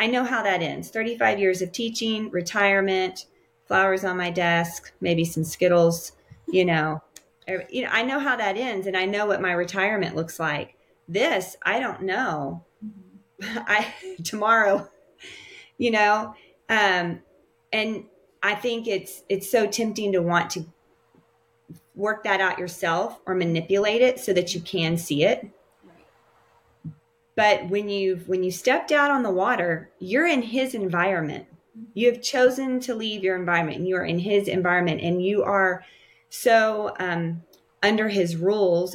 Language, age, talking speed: English, 30-49, 155 wpm